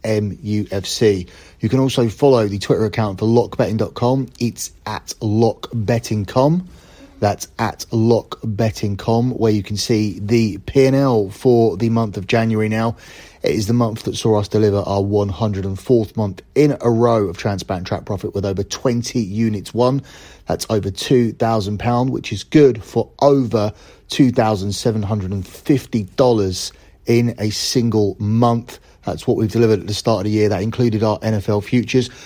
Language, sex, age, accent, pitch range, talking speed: English, male, 30-49, British, 100-120 Hz, 145 wpm